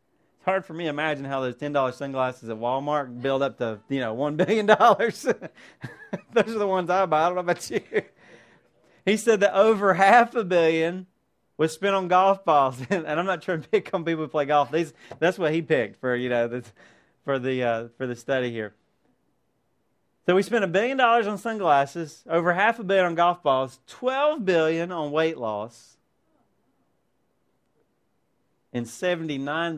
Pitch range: 130-195 Hz